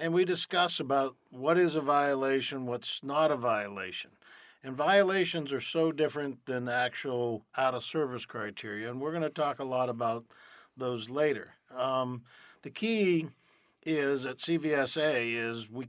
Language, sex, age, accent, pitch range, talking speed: English, male, 50-69, American, 120-155 Hz, 150 wpm